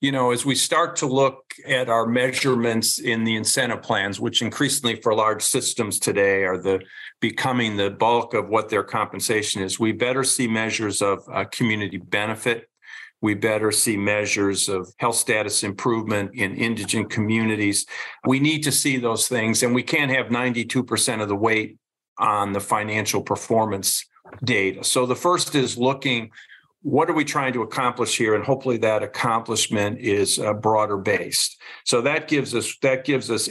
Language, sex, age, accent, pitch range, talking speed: English, male, 50-69, American, 105-130 Hz, 170 wpm